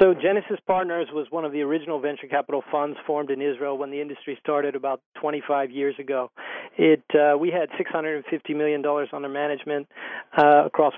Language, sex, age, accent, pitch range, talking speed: English, male, 40-59, American, 145-160 Hz, 175 wpm